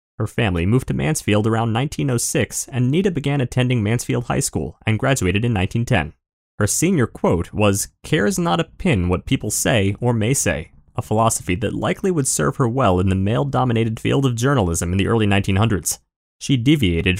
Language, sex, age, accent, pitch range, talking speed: English, male, 30-49, American, 95-135 Hz, 180 wpm